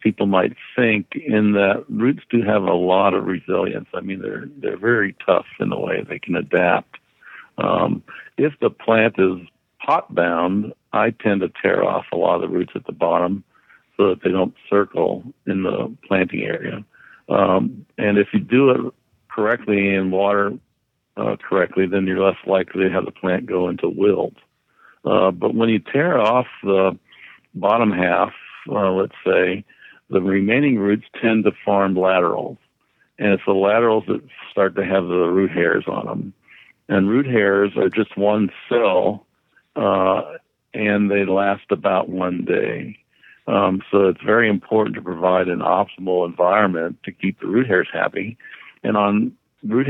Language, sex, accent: English, male, American